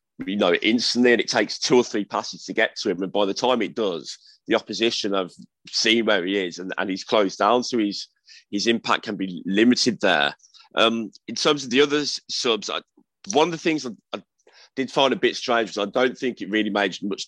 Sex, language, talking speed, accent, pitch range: male, English, 235 wpm, British, 95-115 Hz